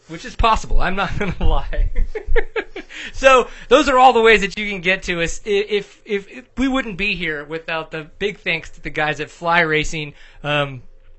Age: 30-49